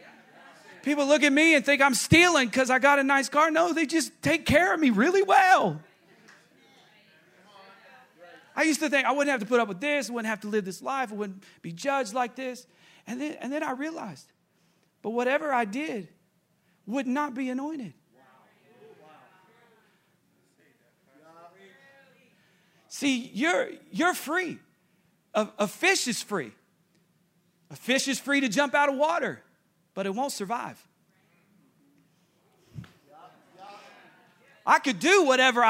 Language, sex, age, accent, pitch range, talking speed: English, male, 40-59, American, 195-285 Hz, 150 wpm